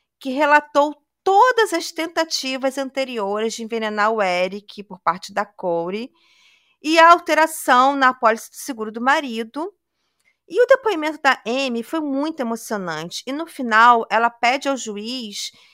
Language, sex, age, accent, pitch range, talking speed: Portuguese, female, 40-59, Brazilian, 230-320 Hz, 145 wpm